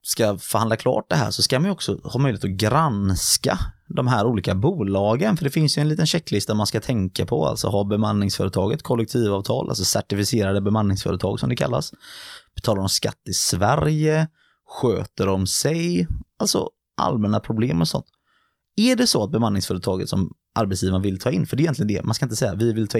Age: 20-39